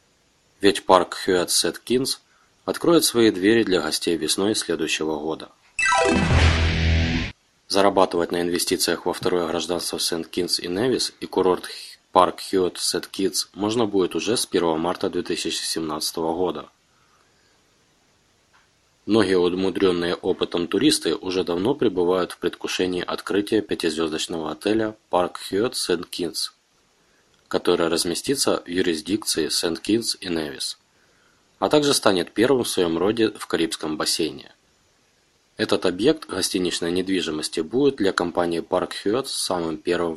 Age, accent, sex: 20-39, native, male